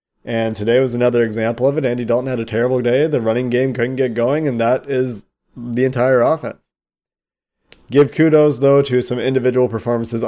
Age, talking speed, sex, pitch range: 20-39, 185 wpm, male, 110-120 Hz